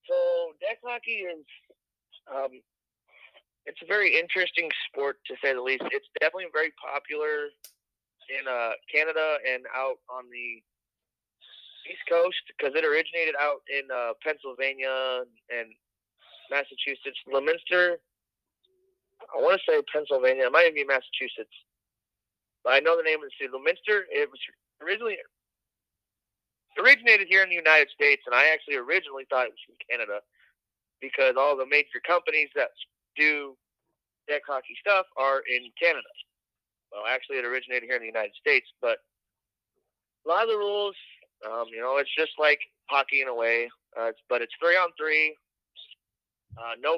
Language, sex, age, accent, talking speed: English, male, 30-49, American, 150 wpm